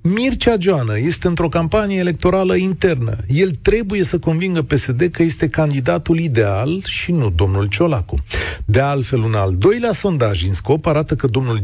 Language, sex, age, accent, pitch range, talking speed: Romanian, male, 40-59, native, 100-170 Hz, 160 wpm